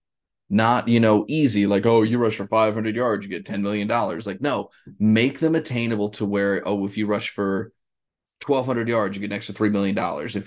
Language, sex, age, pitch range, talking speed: English, male, 20-39, 100-115 Hz, 205 wpm